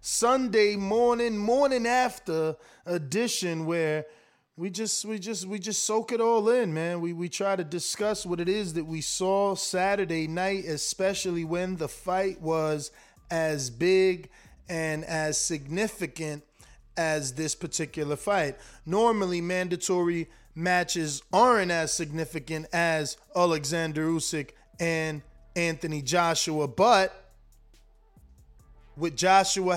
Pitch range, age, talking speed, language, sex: 160-205 Hz, 20-39, 120 wpm, English, male